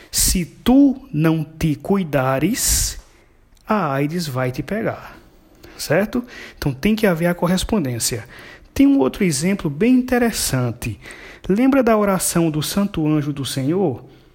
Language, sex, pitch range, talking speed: Portuguese, male, 140-220 Hz, 130 wpm